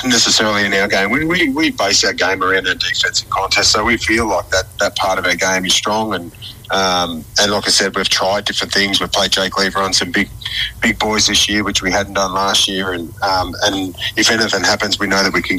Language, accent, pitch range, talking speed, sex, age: English, Australian, 95-105 Hz, 245 wpm, male, 30-49